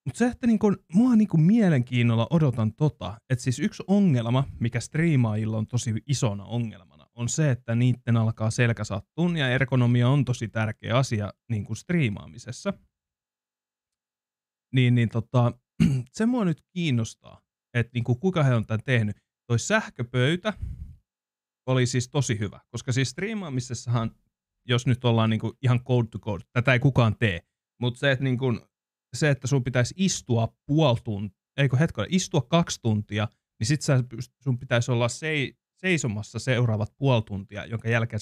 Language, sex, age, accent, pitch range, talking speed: Finnish, male, 30-49, native, 110-145 Hz, 150 wpm